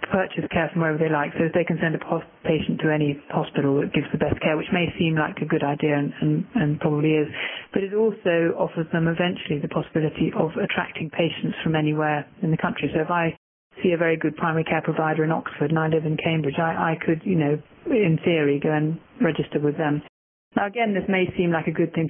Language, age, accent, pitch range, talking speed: English, 30-49, British, 150-170 Hz, 235 wpm